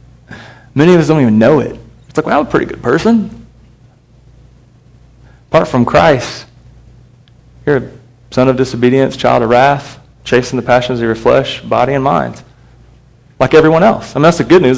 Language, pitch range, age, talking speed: English, 115-135 Hz, 30-49, 180 wpm